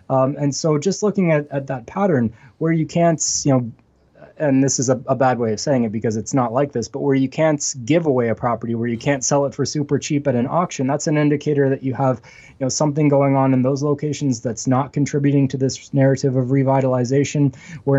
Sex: male